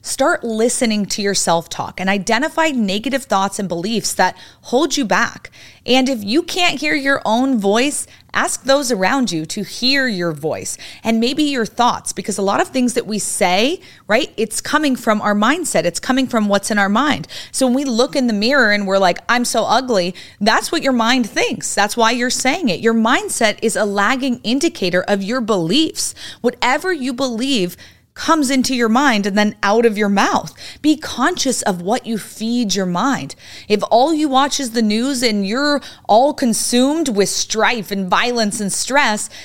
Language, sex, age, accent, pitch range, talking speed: English, female, 30-49, American, 200-265 Hz, 190 wpm